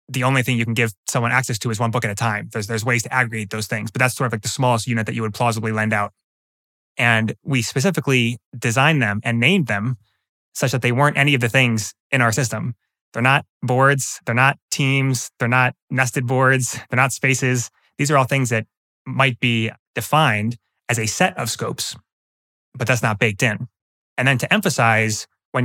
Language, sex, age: English, male, 20-39